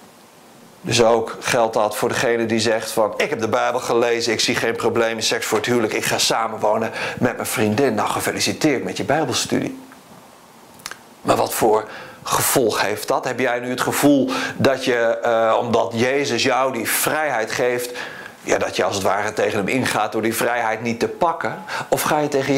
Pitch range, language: 115-135 Hz, Dutch